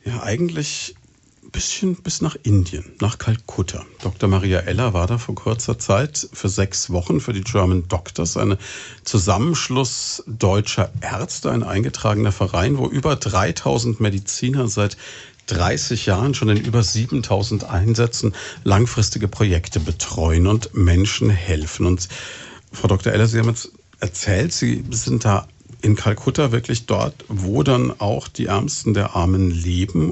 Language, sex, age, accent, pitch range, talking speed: German, male, 50-69, German, 95-120 Hz, 145 wpm